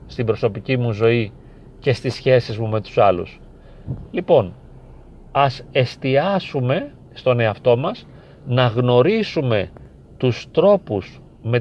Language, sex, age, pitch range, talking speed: Greek, male, 40-59, 120-145 Hz, 115 wpm